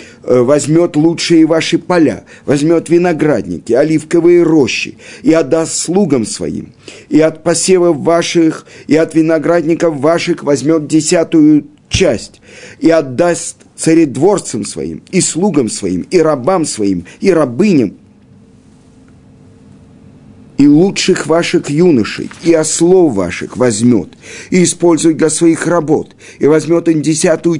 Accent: native